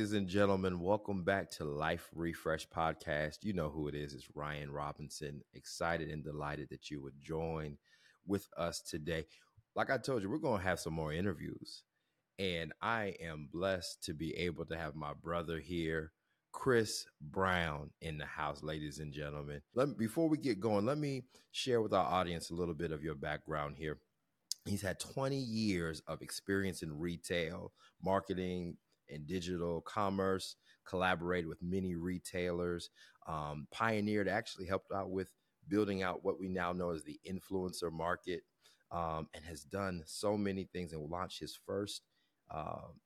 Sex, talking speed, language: male, 170 wpm, English